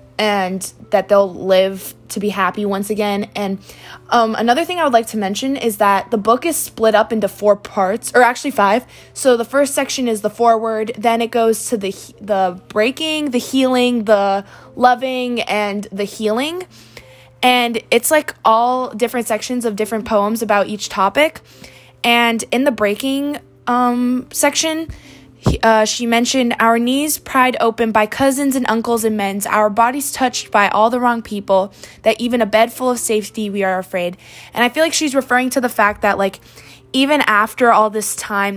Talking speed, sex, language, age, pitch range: 180 wpm, female, English, 20-39, 200-245 Hz